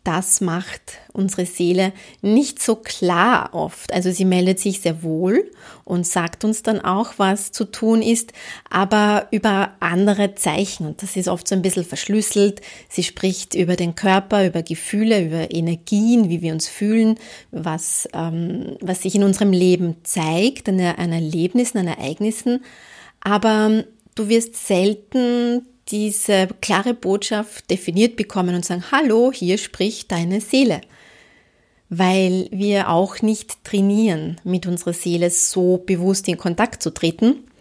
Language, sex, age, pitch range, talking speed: German, female, 30-49, 180-220 Hz, 145 wpm